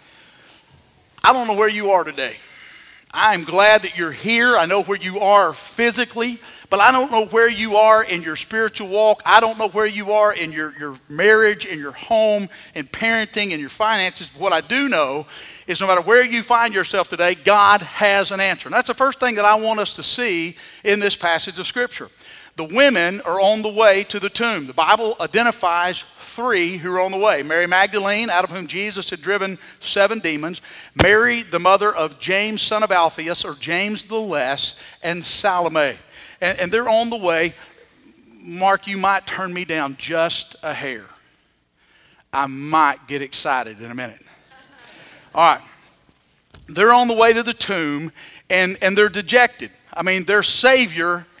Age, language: 50-69, English